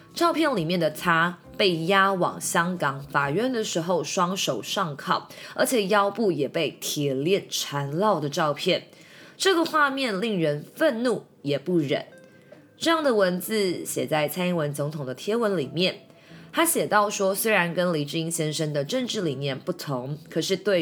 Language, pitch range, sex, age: Chinese, 155-215 Hz, female, 20-39